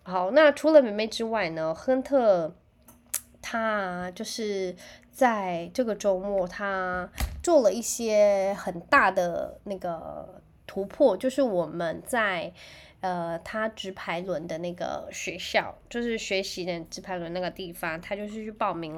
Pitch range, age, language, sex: 180-225 Hz, 20-39, Chinese, female